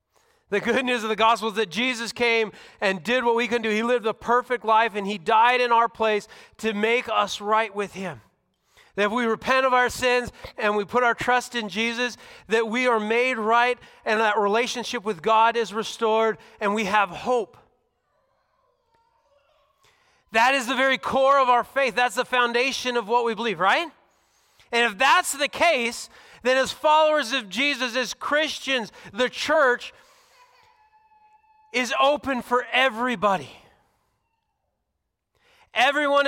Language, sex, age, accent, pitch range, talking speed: English, male, 40-59, American, 215-255 Hz, 160 wpm